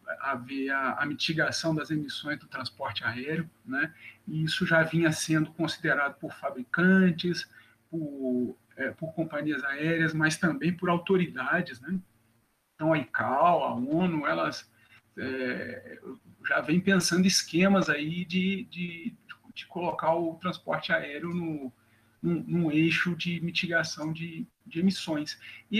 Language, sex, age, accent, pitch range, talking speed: Portuguese, male, 50-69, Brazilian, 155-190 Hz, 135 wpm